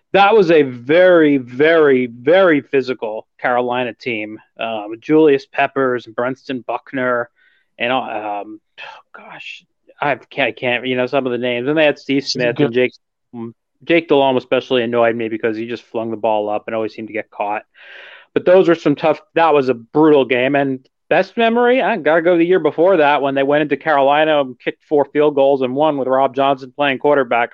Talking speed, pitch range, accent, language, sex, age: 200 wpm, 120-145 Hz, American, English, male, 30-49